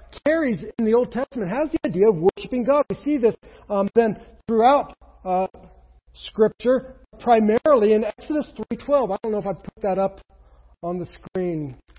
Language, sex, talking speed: English, male, 170 wpm